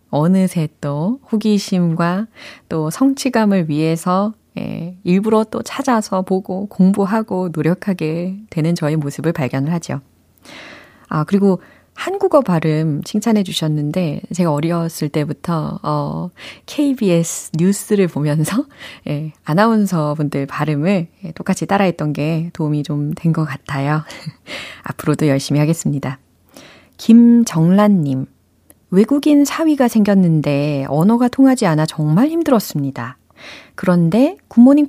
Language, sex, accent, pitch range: Korean, female, native, 155-210 Hz